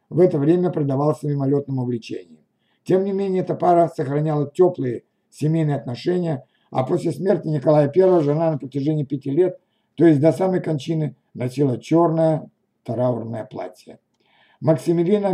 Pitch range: 140-170 Hz